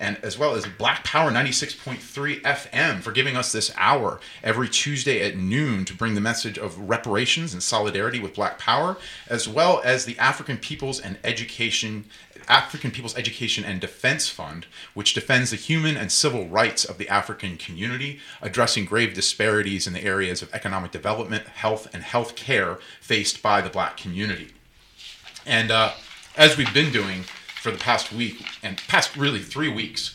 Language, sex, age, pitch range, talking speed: English, male, 30-49, 100-135 Hz, 170 wpm